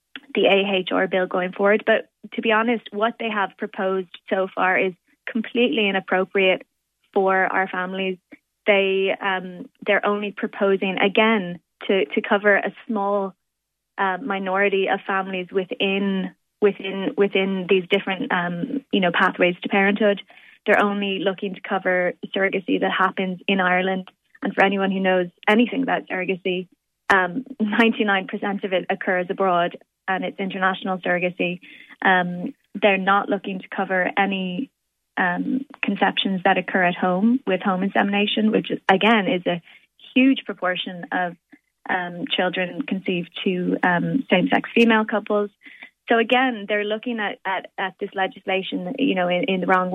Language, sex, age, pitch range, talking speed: English, female, 20-39, 185-210 Hz, 145 wpm